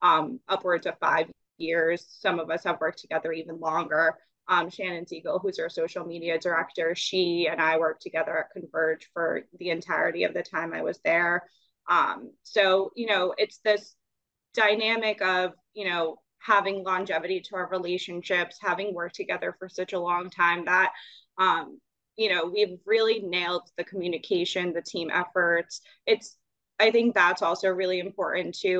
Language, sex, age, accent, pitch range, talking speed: English, female, 20-39, American, 170-195 Hz, 165 wpm